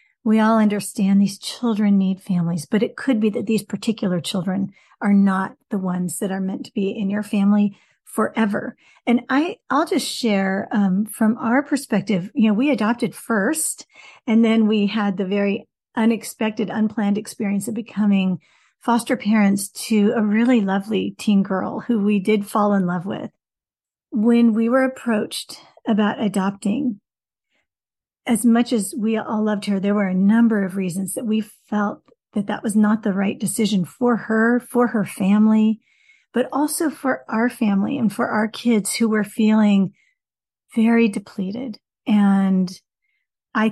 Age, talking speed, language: 40-59, 160 wpm, English